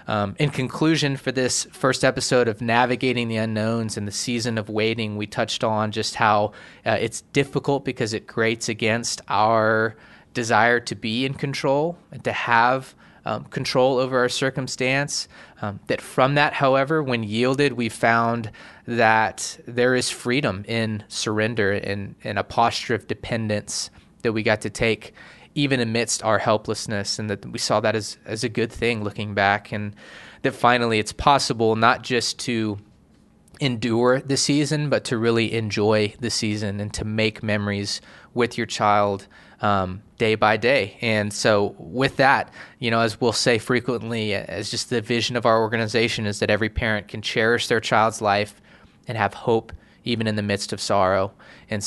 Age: 20-39